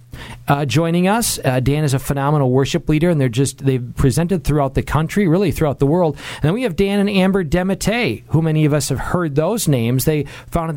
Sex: male